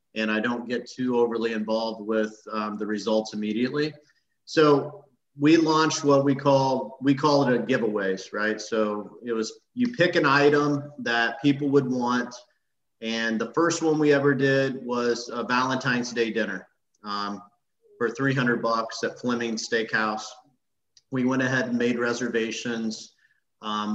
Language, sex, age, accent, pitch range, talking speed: English, male, 40-59, American, 115-135 Hz, 155 wpm